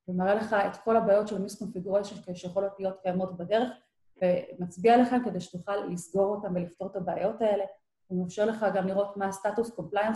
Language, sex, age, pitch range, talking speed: Hebrew, female, 30-49, 180-220 Hz, 175 wpm